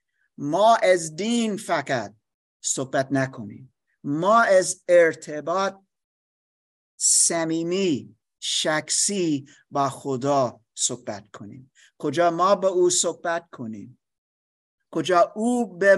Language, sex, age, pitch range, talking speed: Persian, male, 50-69, 135-205 Hz, 90 wpm